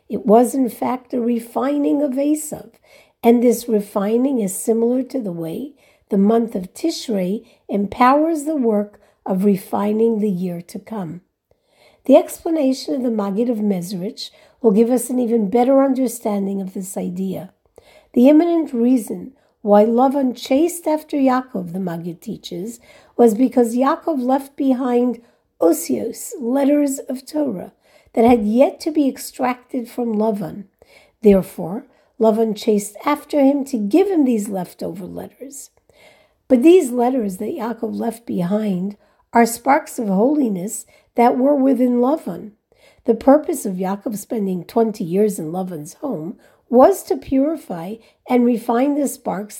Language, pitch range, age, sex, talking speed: English, 210-275 Hz, 50-69, female, 140 wpm